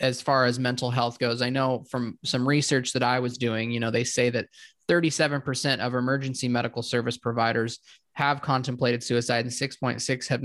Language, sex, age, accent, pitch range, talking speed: English, male, 20-39, American, 115-135 Hz, 185 wpm